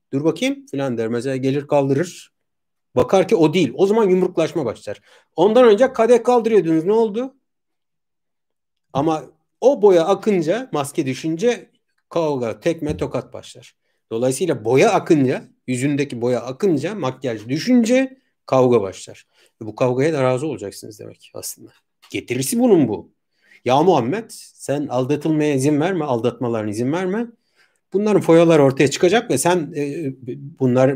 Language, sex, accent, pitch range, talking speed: Turkish, male, native, 125-185 Hz, 135 wpm